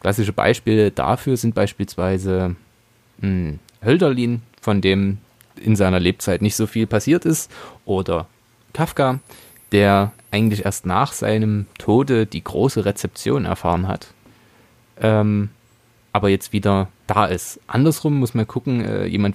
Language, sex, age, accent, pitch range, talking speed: German, male, 20-39, German, 100-120 Hz, 125 wpm